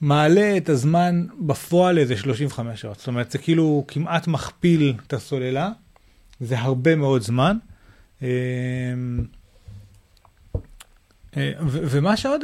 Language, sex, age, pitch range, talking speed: Hebrew, male, 30-49, 120-165 Hz, 105 wpm